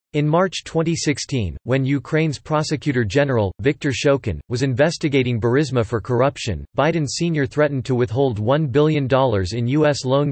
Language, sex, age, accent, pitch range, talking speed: English, male, 40-59, American, 120-150 Hz, 140 wpm